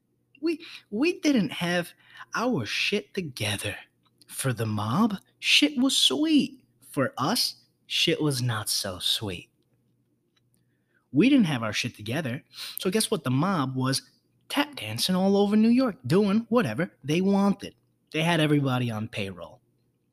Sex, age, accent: male, 20-39, American